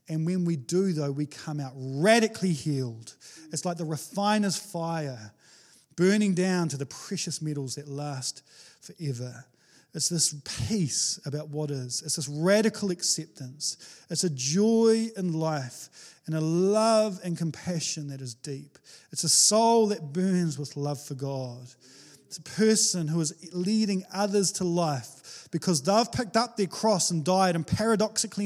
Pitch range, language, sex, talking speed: 145-185 Hz, English, male, 160 wpm